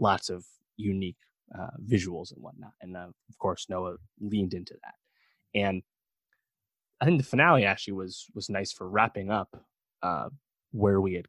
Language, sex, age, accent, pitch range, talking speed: English, male, 20-39, American, 95-120 Hz, 165 wpm